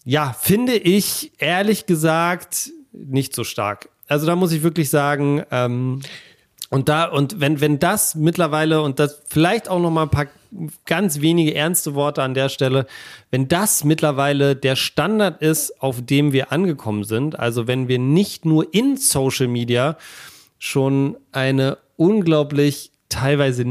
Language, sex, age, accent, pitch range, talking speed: German, male, 40-59, German, 130-165 Hz, 150 wpm